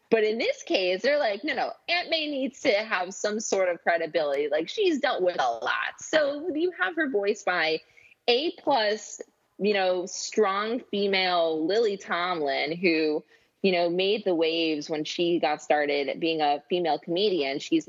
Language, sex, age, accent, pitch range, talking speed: English, female, 20-39, American, 155-200 Hz, 170 wpm